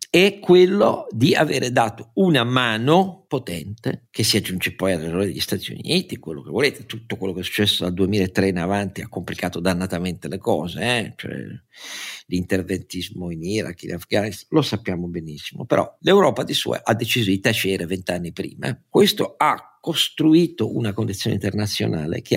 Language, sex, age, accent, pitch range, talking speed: Italian, male, 50-69, native, 95-120 Hz, 160 wpm